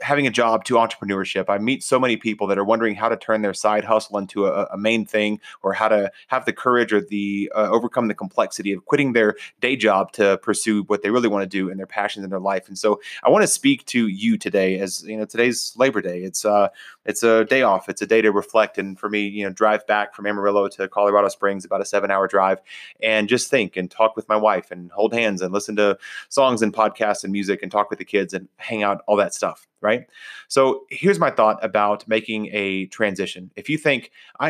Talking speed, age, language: 245 wpm, 30-49, English